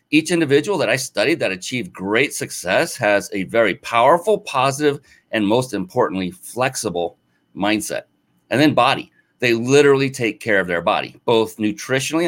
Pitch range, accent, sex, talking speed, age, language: 100-135 Hz, American, male, 150 wpm, 40-59, English